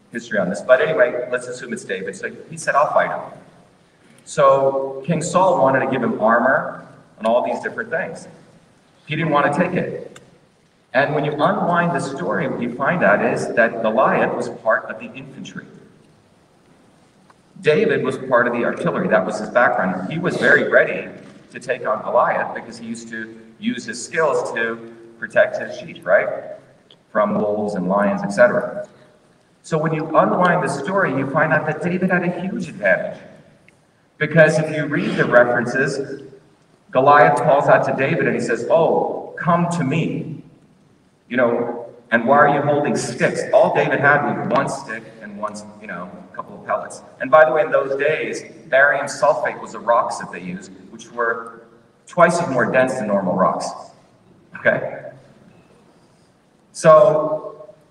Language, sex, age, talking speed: English, male, 40-59, 175 wpm